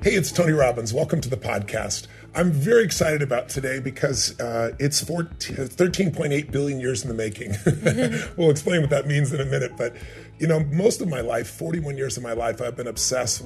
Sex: female